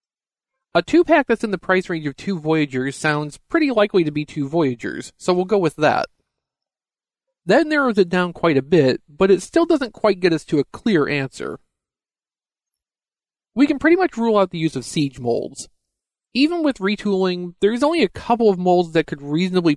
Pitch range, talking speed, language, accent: 135-210 Hz, 190 wpm, English, American